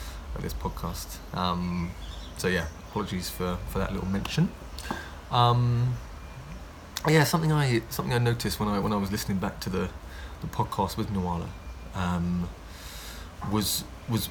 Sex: male